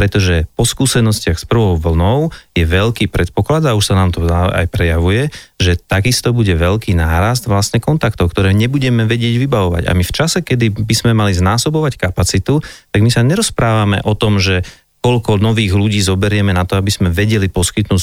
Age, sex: 30-49, male